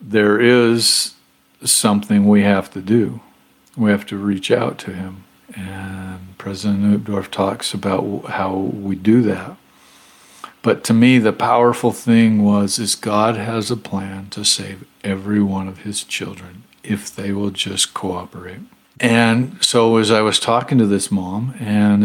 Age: 50-69